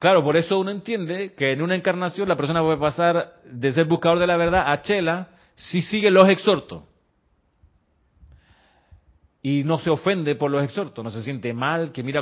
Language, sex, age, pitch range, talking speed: Spanish, male, 40-59, 125-170 Hz, 185 wpm